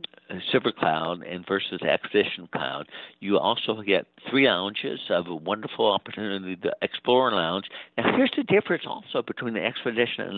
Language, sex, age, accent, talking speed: English, male, 60-79, American, 155 wpm